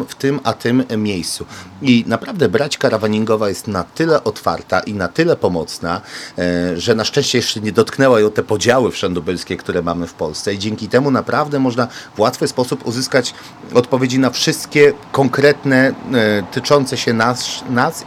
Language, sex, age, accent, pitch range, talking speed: Polish, male, 40-59, native, 105-145 Hz, 160 wpm